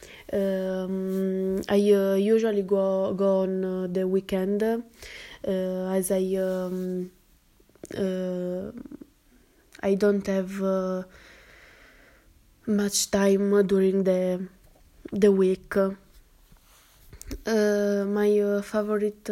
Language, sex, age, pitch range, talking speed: English, female, 20-39, 190-205 Hz, 90 wpm